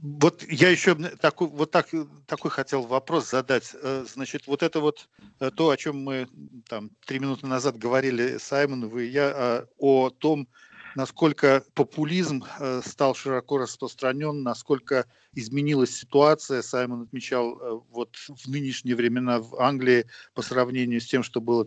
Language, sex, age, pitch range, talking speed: English, male, 50-69, 120-145 Hz, 140 wpm